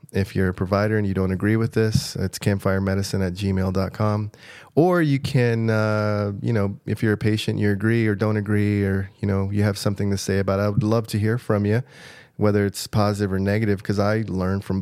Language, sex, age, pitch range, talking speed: English, male, 20-39, 95-110 Hz, 225 wpm